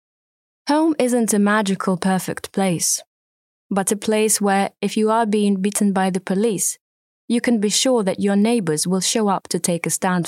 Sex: female